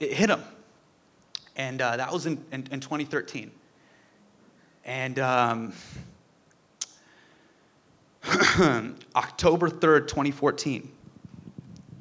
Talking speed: 80 wpm